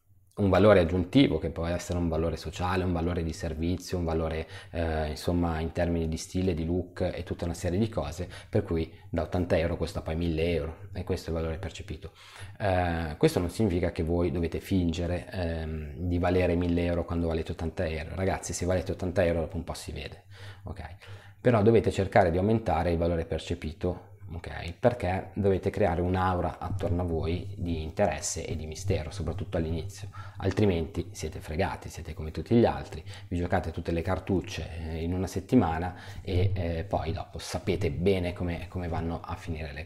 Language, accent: Italian, native